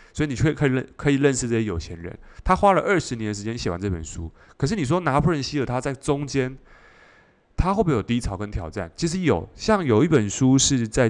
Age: 20-39